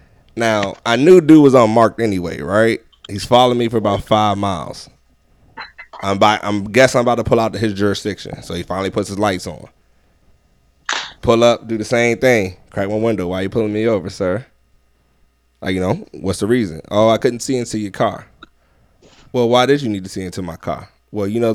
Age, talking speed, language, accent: 20-39, 210 wpm, English, American